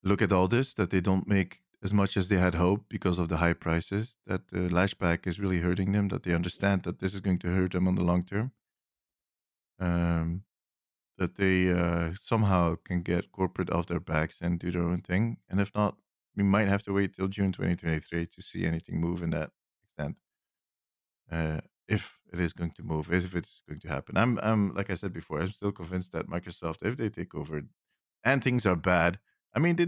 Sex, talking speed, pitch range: male, 215 wpm, 85-105 Hz